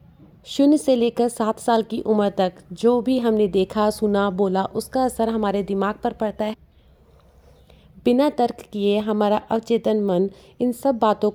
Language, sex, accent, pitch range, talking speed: Hindi, female, native, 195-230 Hz, 160 wpm